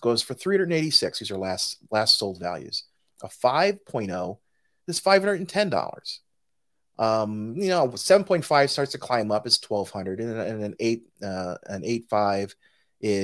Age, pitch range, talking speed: 30-49, 100-160 Hz, 130 wpm